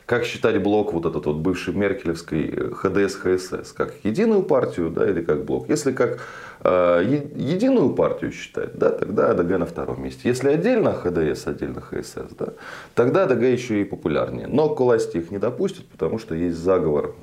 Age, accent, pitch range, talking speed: 30-49, native, 85-120 Hz, 170 wpm